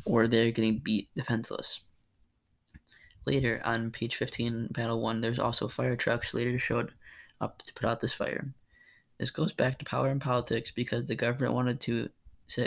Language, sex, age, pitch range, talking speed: English, male, 10-29, 115-125 Hz, 170 wpm